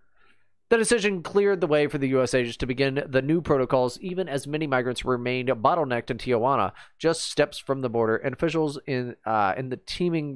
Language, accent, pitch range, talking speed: English, American, 115-150 Hz, 195 wpm